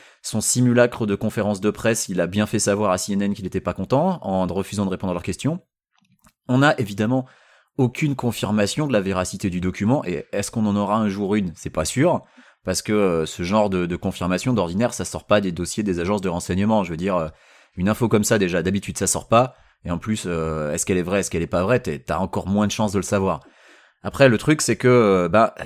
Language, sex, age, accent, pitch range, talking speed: French, male, 30-49, French, 95-120 Hz, 235 wpm